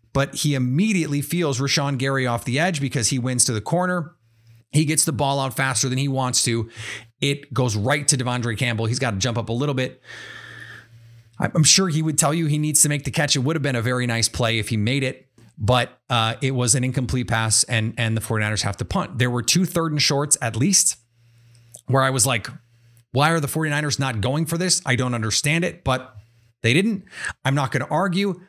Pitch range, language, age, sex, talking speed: 120-155 Hz, English, 30-49, male, 230 wpm